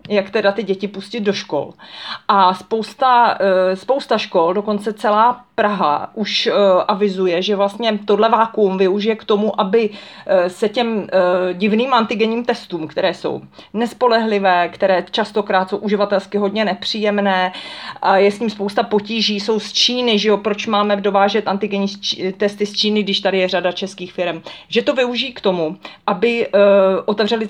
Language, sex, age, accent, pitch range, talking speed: Czech, female, 30-49, native, 190-215 Hz, 150 wpm